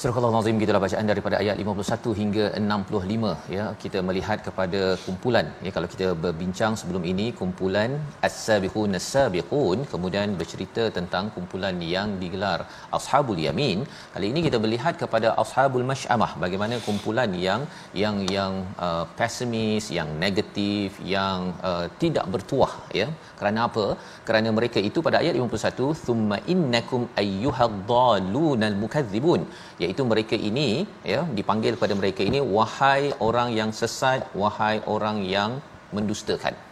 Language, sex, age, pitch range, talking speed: Malayalam, male, 40-59, 100-130 Hz, 130 wpm